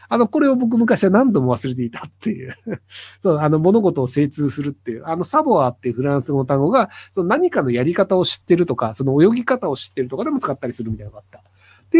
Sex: male